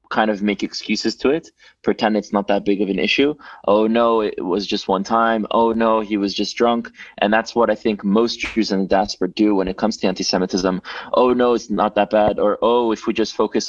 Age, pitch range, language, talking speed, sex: 20-39, 100-115 Hz, Dutch, 240 wpm, male